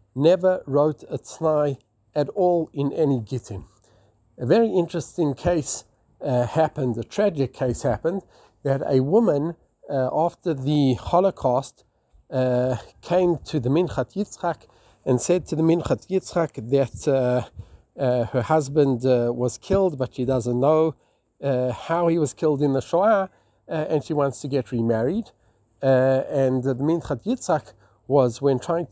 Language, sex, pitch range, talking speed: English, male, 130-165 Hz, 150 wpm